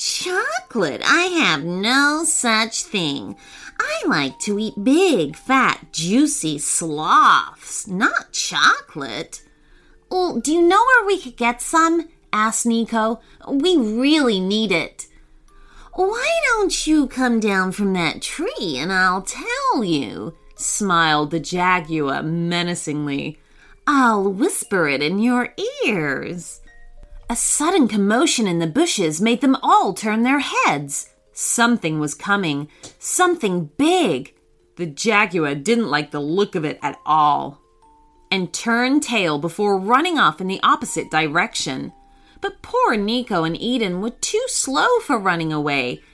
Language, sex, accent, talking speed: English, female, American, 130 wpm